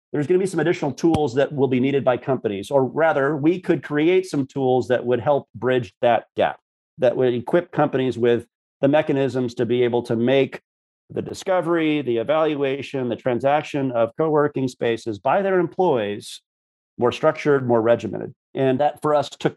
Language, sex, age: English, male, 40-59